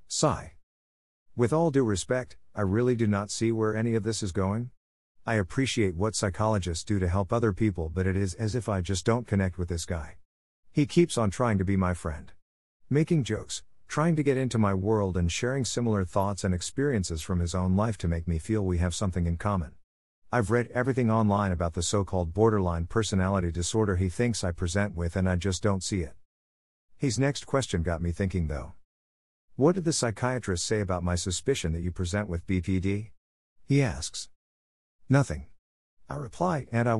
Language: English